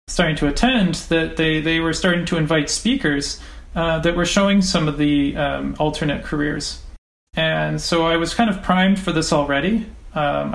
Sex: male